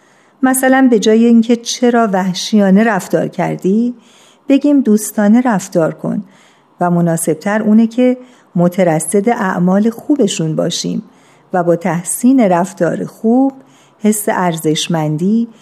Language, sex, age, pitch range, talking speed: Persian, female, 50-69, 175-220 Hz, 105 wpm